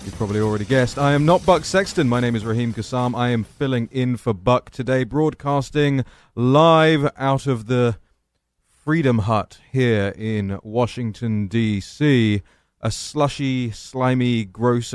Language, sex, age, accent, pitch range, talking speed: English, male, 30-49, British, 100-135 Hz, 145 wpm